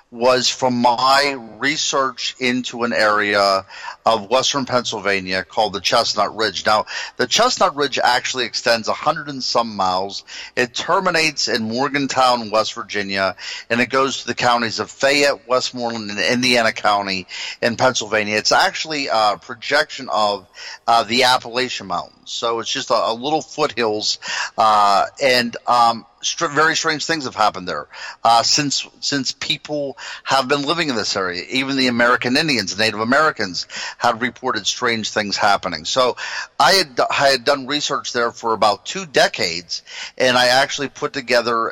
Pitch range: 110-135 Hz